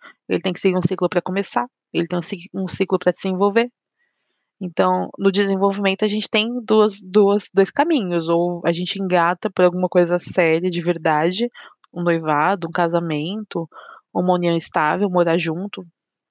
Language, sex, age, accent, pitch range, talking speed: Portuguese, female, 20-39, Brazilian, 180-240 Hz, 160 wpm